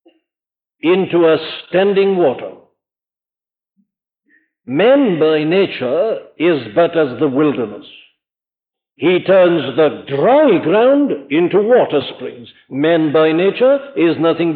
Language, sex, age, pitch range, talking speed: English, male, 60-79, 155-205 Hz, 105 wpm